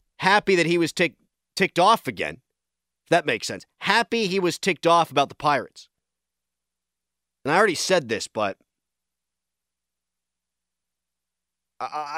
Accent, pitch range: American, 120-165 Hz